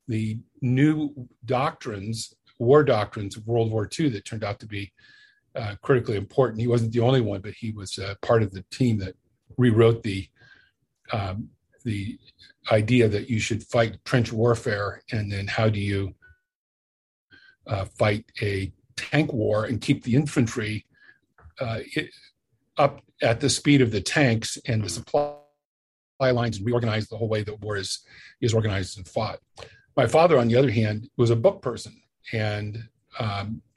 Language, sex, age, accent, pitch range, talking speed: English, male, 50-69, American, 110-130 Hz, 165 wpm